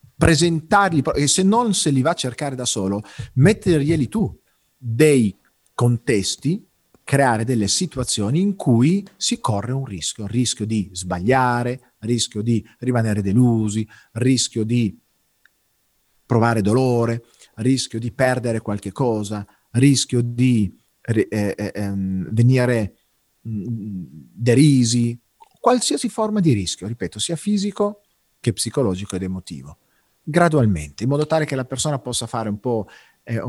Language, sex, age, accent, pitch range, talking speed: Italian, male, 40-59, native, 105-130 Hz, 135 wpm